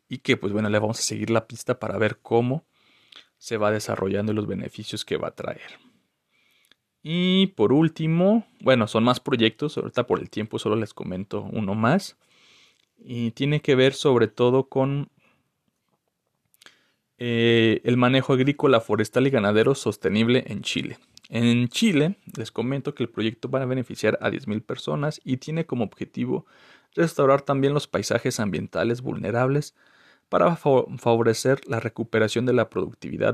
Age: 40-59